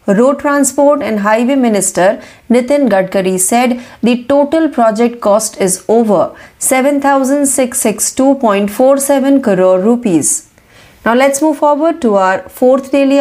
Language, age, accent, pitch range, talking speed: Marathi, 30-49, native, 210-275 Hz, 115 wpm